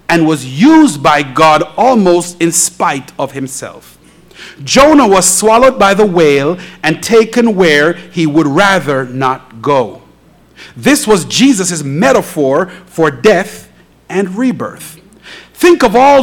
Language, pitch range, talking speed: English, 175-240 Hz, 130 wpm